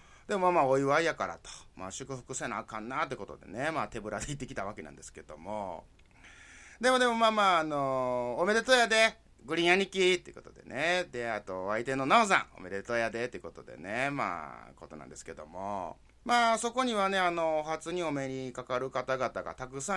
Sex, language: male, Japanese